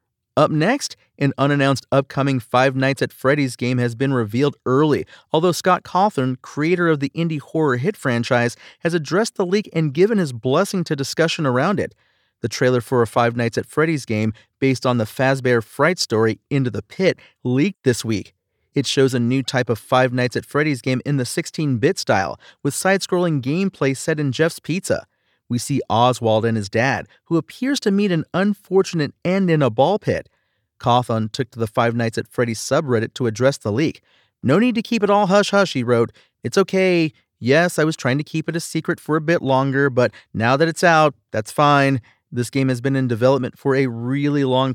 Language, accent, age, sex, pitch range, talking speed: English, American, 30-49, male, 120-160 Hz, 200 wpm